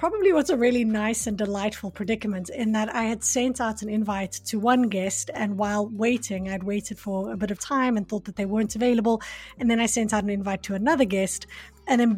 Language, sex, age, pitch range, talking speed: English, female, 30-49, 200-240 Hz, 230 wpm